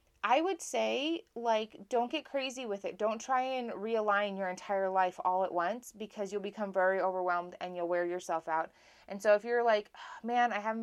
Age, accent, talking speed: 20-39, American, 205 wpm